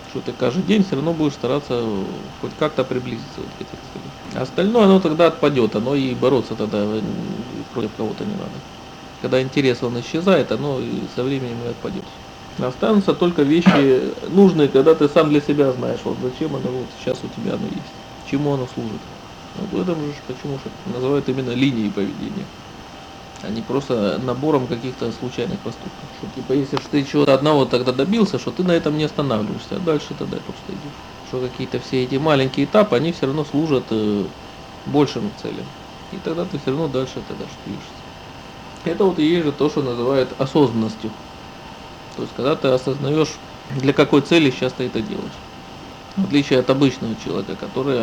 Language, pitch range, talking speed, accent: Russian, 125-150 Hz, 175 wpm, native